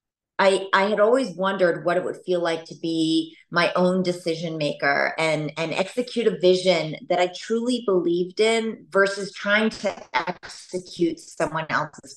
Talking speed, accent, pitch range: 160 wpm, American, 160-195 Hz